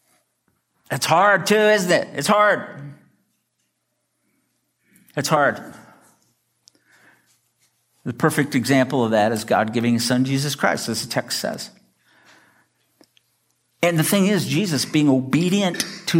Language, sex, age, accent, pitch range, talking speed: English, male, 60-79, American, 130-215 Hz, 120 wpm